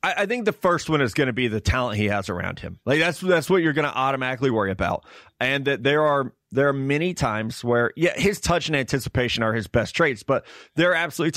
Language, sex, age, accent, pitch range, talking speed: English, male, 30-49, American, 125-165 Hz, 245 wpm